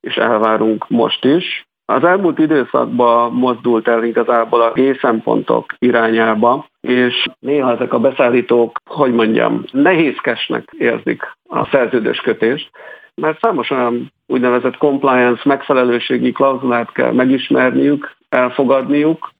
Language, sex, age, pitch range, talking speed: Hungarian, male, 50-69, 120-140 Hz, 105 wpm